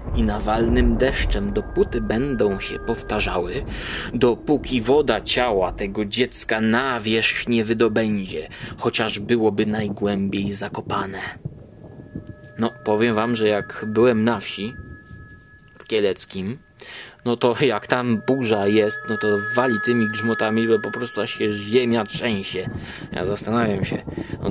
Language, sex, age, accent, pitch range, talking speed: Polish, male, 20-39, native, 105-125 Hz, 125 wpm